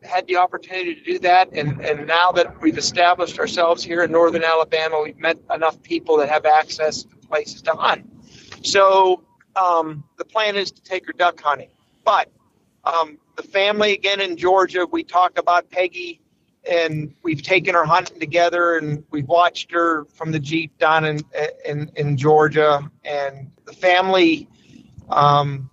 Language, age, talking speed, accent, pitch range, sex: English, 50-69, 165 wpm, American, 150-180 Hz, male